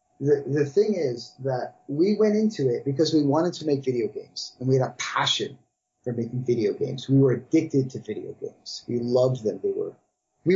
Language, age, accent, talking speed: English, 30-49, American, 210 wpm